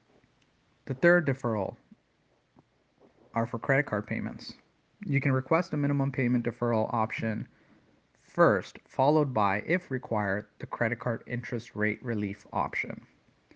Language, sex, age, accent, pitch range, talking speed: English, male, 30-49, American, 110-135 Hz, 125 wpm